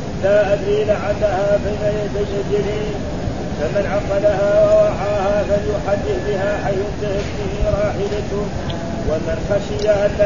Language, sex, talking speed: Arabic, male, 100 wpm